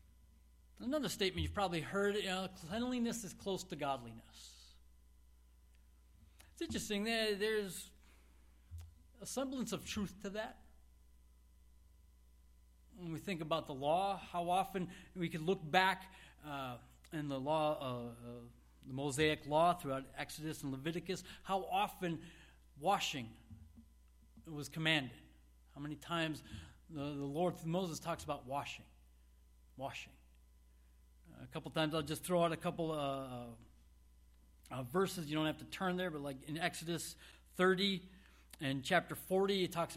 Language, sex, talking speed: English, male, 140 wpm